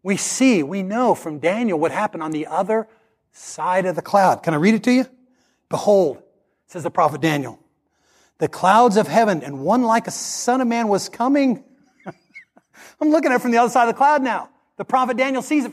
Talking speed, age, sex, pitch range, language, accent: 215 wpm, 40-59, male, 195-275 Hz, English, American